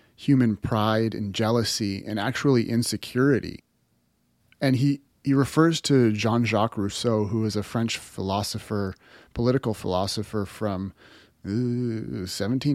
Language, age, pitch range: English, 30-49, 105-125 Hz